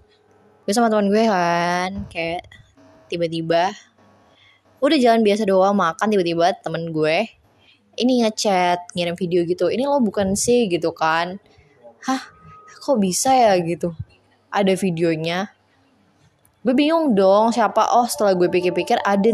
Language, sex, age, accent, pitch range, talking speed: Indonesian, female, 20-39, native, 175-230 Hz, 125 wpm